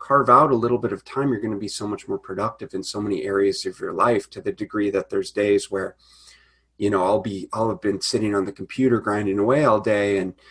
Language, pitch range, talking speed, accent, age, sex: English, 95-120 Hz, 255 wpm, American, 30-49, male